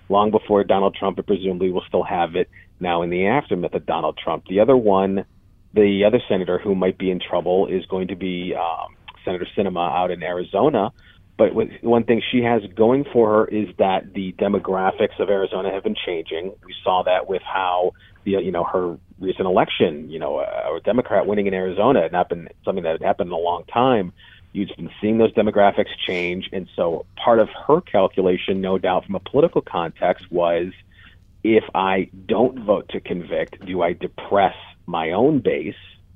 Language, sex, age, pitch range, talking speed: English, male, 40-59, 90-105 Hz, 190 wpm